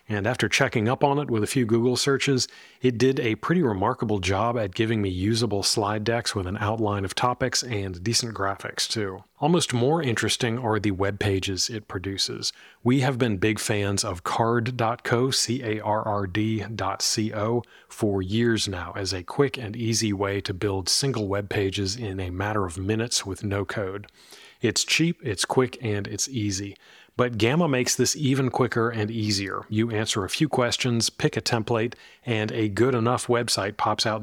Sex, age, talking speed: male, 30-49, 175 wpm